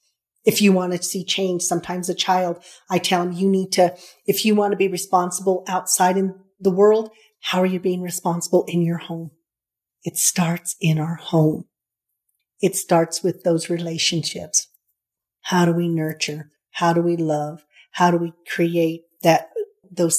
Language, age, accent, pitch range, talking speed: English, 40-59, American, 165-185 Hz, 170 wpm